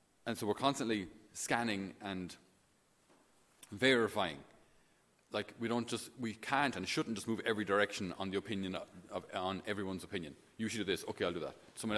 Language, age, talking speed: English, 30-49, 180 wpm